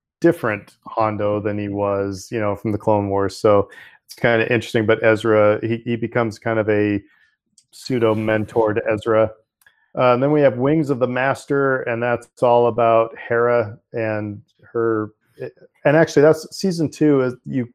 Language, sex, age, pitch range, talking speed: English, male, 40-59, 110-125 Hz, 170 wpm